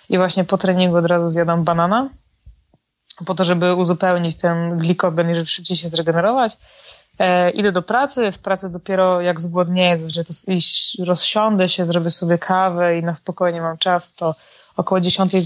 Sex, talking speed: female, 165 wpm